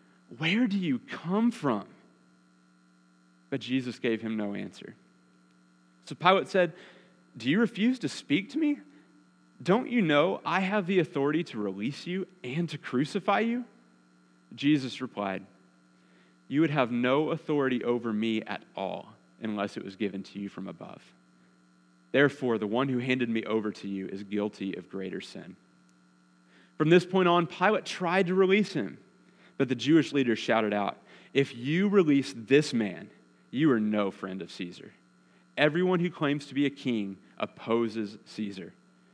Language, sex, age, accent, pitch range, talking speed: English, male, 30-49, American, 90-145 Hz, 160 wpm